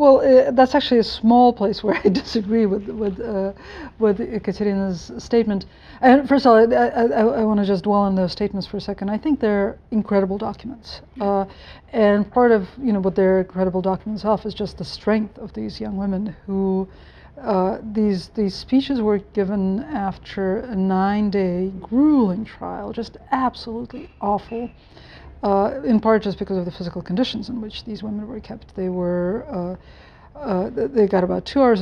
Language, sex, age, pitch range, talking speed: English, female, 50-69, 190-225 Hz, 180 wpm